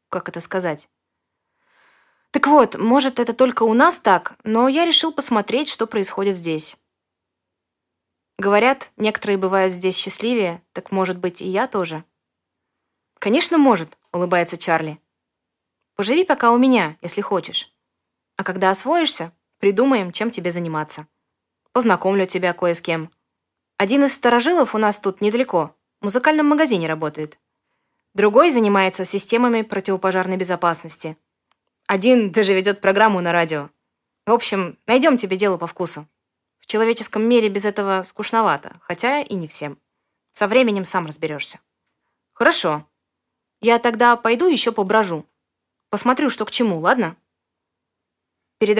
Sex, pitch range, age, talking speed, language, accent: female, 175-235 Hz, 20-39, 130 wpm, Russian, native